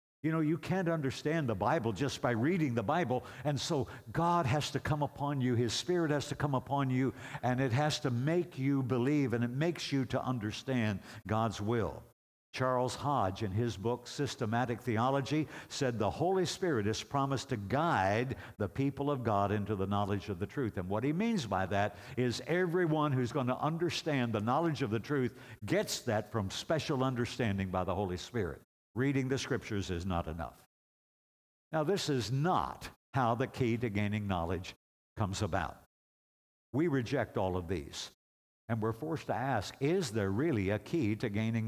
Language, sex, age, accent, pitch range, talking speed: English, male, 60-79, American, 110-145 Hz, 185 wpm